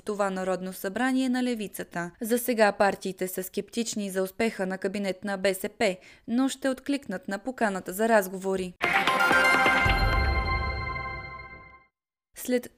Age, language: 20-39, Bulgarian